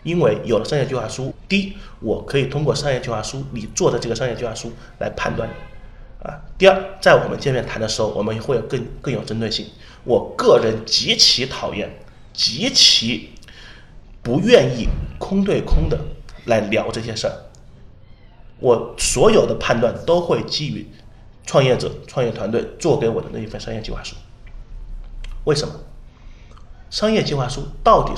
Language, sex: Chinese, male